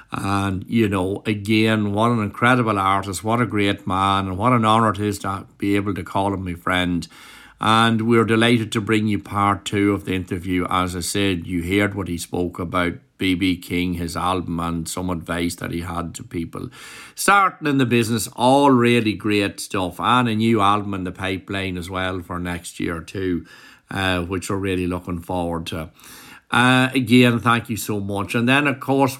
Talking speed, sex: 195 wpm, male